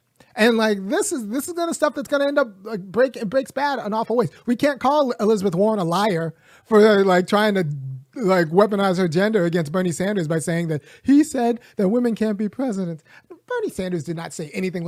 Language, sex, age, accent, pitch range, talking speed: English, male, 30-49, American, 175-235 Hz, 225 wpm